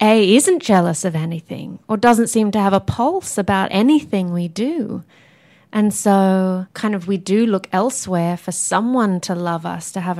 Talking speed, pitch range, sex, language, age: 180 wpm, 175-200 Hz, female, English, 20-39